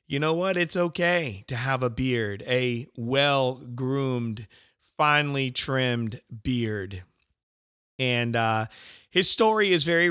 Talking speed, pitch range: 120 wpm, 115-150 Hz